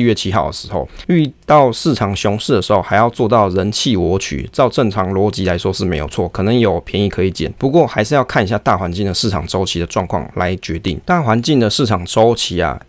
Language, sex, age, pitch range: Chinese, male, 20-39, 95-120 Hz